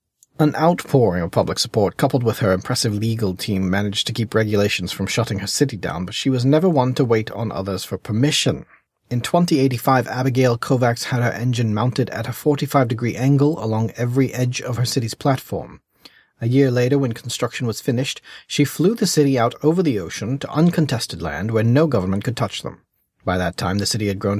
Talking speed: 200 wpm